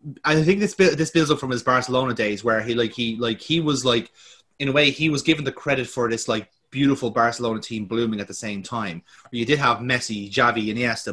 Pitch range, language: 115-145 Hz, English